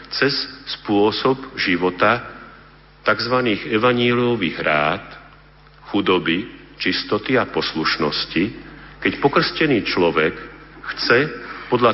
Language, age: Slovak, 50-69